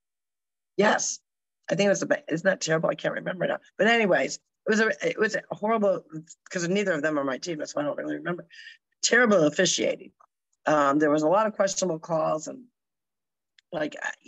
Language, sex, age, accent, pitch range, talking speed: English, female, 50-69, American, 160-225 Hz, 200 wpm